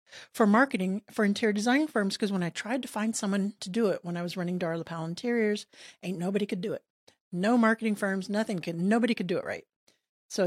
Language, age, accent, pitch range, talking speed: English, 40-59, American, 180-230 Hz, 225 wpm